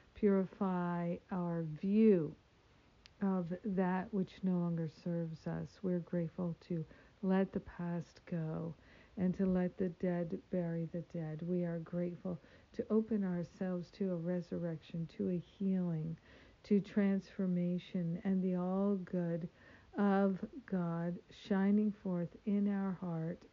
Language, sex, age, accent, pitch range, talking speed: English, female, 60-79, American, 170-195 Hz, 130 wpm